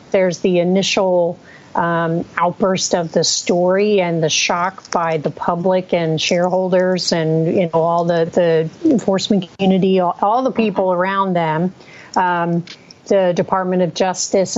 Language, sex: English, female